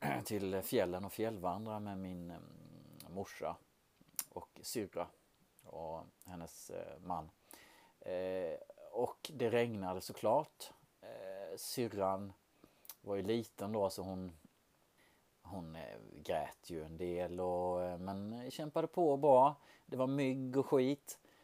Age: 30-49